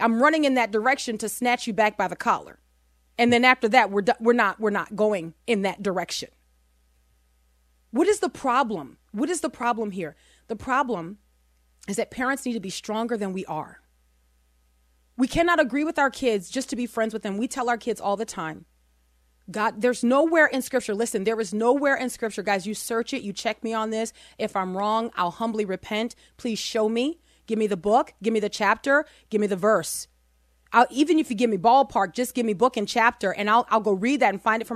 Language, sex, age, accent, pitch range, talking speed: English, female, 30-49, American, 195-270 Hz, 225 wpm